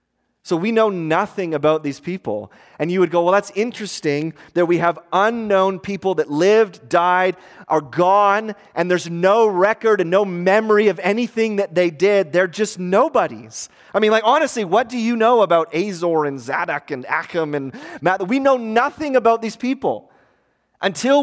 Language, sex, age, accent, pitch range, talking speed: English, male, 30-49, American, 150-205 Hz, 175 wpm